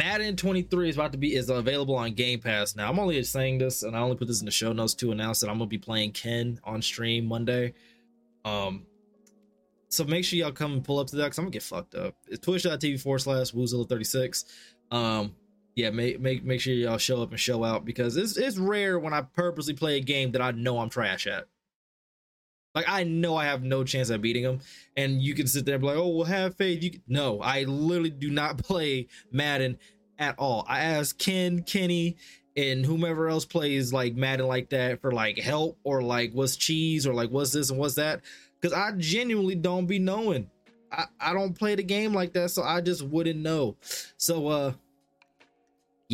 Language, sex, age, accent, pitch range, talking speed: English, male, 20-39, American, 120-170 Hz, 215 wpm